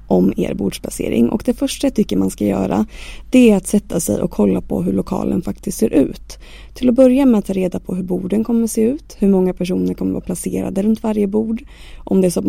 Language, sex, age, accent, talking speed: Swedish, female, 20-39, native, 255 wpm